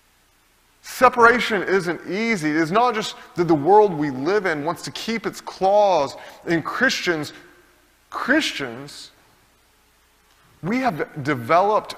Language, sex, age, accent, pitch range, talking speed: English, male, 30-49, American, 160-235 Hz, 115 wpm